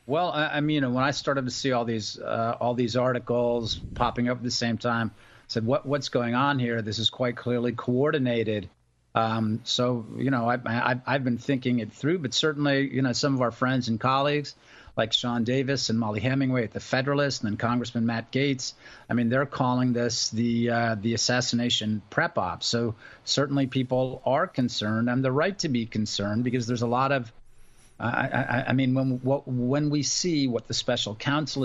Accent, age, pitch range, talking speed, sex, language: American, 40-59, 115-135 Hz, 210 wpm, male, English